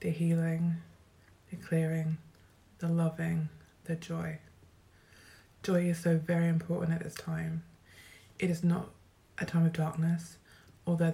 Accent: British